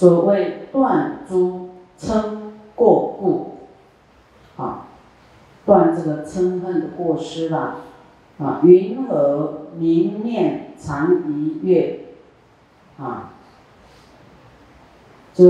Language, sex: Chinese, female